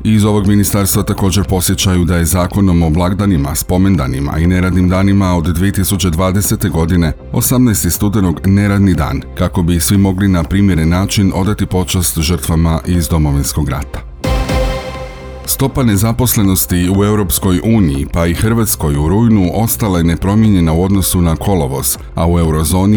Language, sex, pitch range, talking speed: Croatian, male, 85-100 Hz, 140 wpm